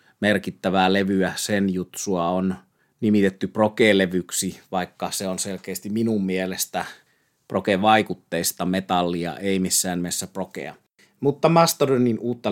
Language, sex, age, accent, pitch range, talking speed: Finnish, male, 30-49, native, 95-105 Hz, 105 wpm